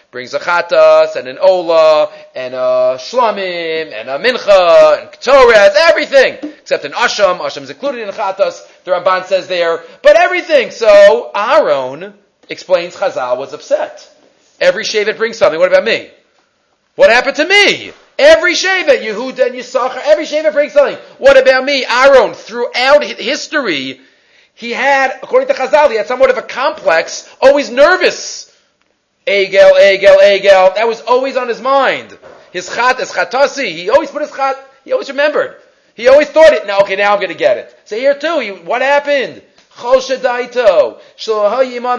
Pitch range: 210-300 Hz